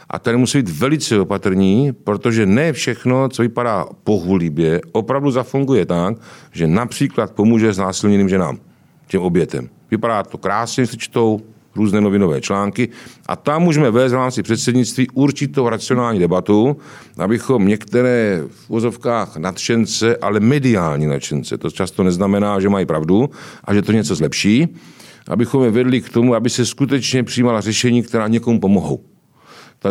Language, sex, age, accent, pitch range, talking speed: Czech, male, 50-69, native, 105-130 Hz, 150 wpm